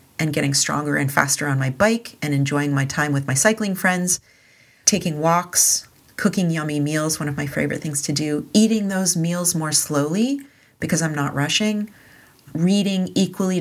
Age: 40-59